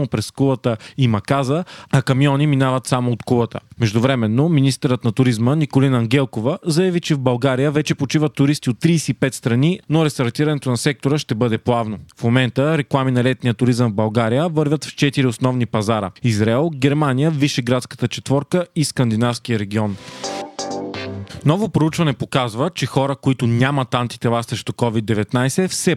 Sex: male